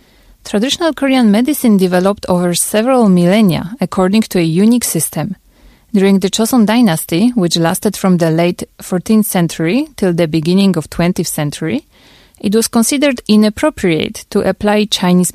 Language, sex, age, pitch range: Korean, female, 30-49, 175-225 Hz